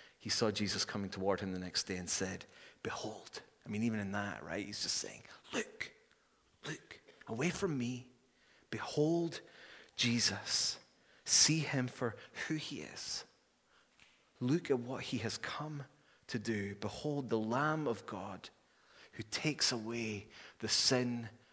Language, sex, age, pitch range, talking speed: English, male, 30-49, 110-135 Hz, 145 wpm